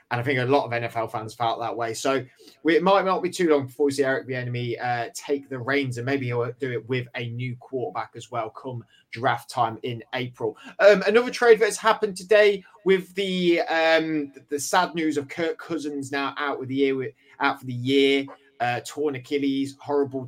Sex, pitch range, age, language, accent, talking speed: male, 125-160 Hz, 20-39, English, British, 215 wpm